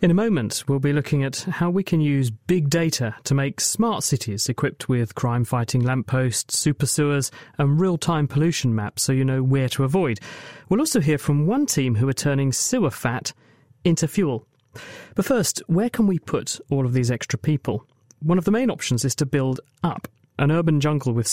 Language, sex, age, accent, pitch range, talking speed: English, male, 40-59, British, 125-165 Hz, 195 wpm